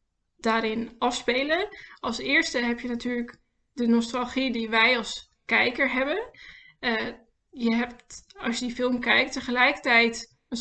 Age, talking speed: 10-29, 135 wpm